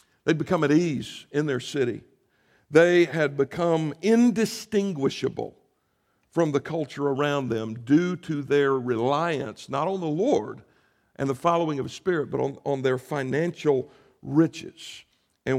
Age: 60-79